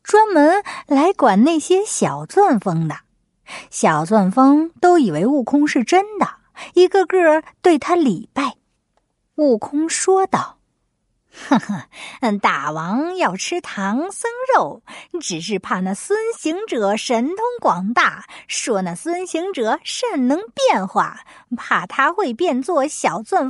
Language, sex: Chinese, female